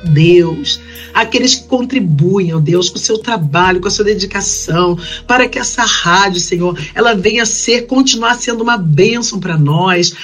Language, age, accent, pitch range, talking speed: Portuguese, 50-69, Brazilian, 175-230 Hz, 170 wpm